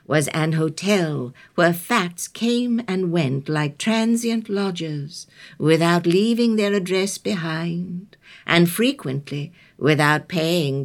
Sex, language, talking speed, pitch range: female, English, 110 wpm, 150-215 Hz